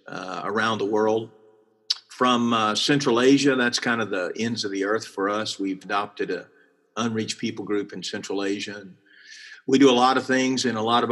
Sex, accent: male, American